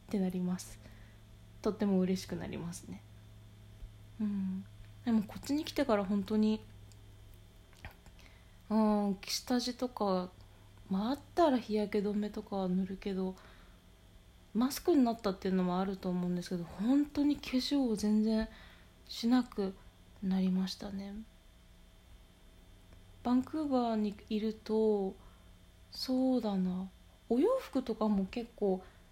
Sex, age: female, 20-39